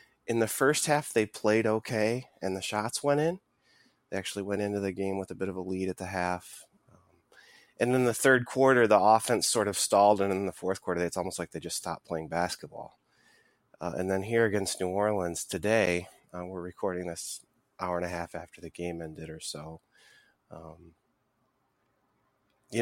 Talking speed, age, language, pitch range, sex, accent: 195 wpm, 30-49, English, 90-115 Hz, male, American